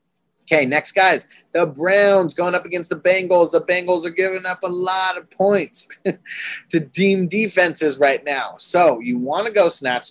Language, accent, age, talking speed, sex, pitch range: English, American, 30-49, 180 wpm, male, 140-190 Hz